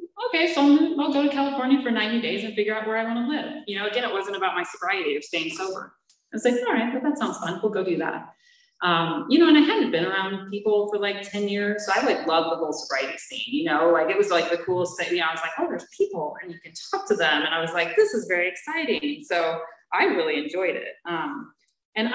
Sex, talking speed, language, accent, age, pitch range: female, 265 wpm, English, American, 30-49, 170-285 Hz